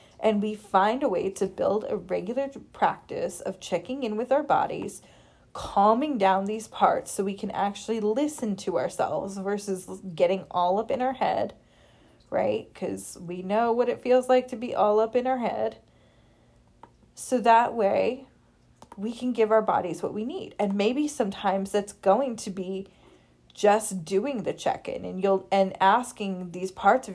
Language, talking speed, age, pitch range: English, 170 wpm, 20-39, 190-255 Hz